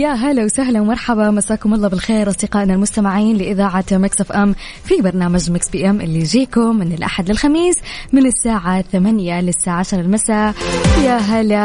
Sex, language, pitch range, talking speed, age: female, English, 185-215 Hz, 160 wpm, 20-39